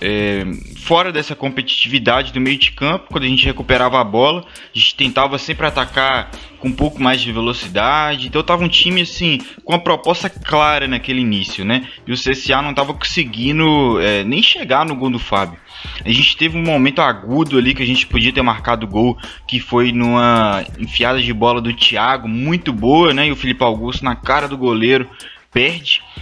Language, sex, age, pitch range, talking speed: Portuguese, male, 20-39, 120-150 Hz, 190 wpm